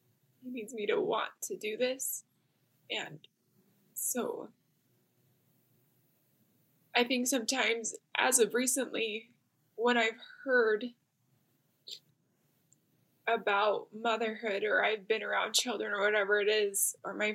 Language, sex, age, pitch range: English, female, 10-29, 200-295 Hz